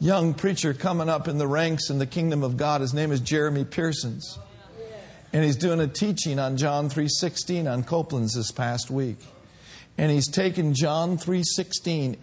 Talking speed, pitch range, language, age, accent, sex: 170 wpm, 130-180 Hz, English, 50-69, American, male